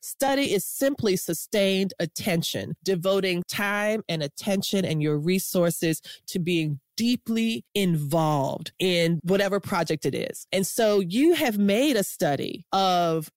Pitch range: 175-230 Hz